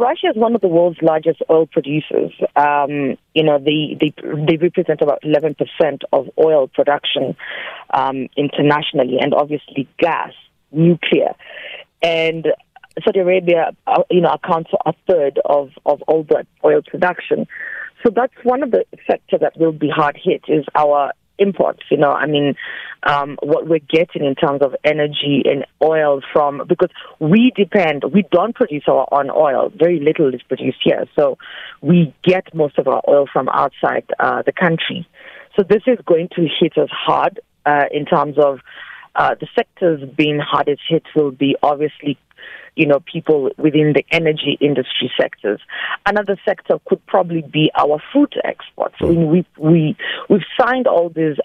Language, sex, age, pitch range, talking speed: English, female, 30-49, 145-175 Hz, 165 wpm